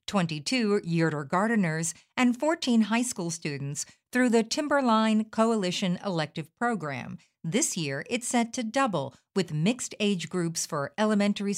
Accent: American